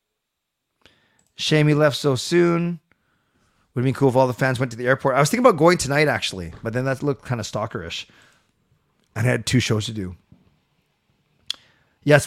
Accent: American